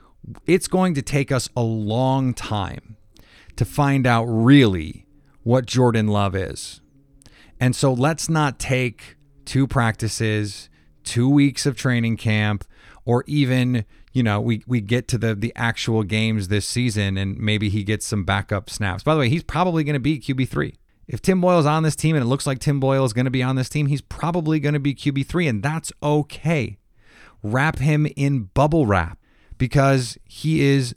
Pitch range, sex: 110-145 Hz, male